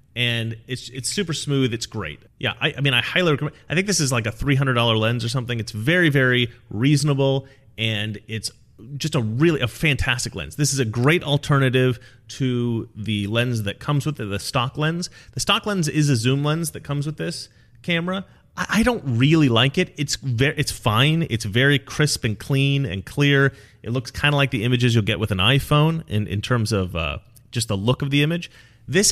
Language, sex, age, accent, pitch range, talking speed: English, male, 30-49, American, 110-140 Hz, 215 wpm